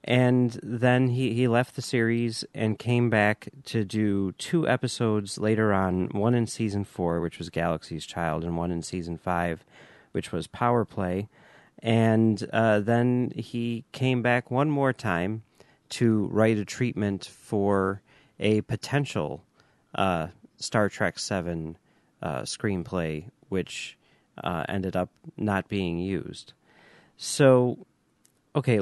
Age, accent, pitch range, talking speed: 40-59, American, 95-125 Hz, 135 wpm